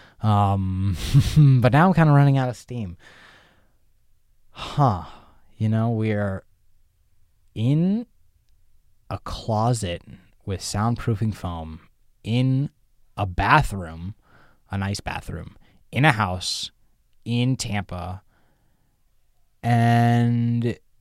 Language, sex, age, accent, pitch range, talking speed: English, male, 20-39, American, 95-125 Hz, 90 wpm